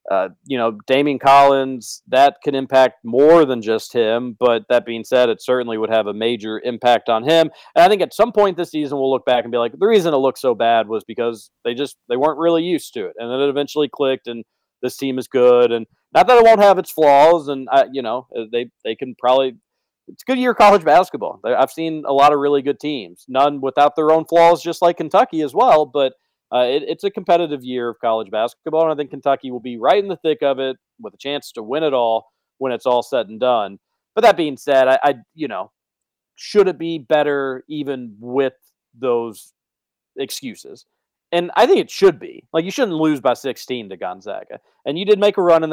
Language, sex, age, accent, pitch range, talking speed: English, male, 40-59, American, 125-160 Hz, 230 wpm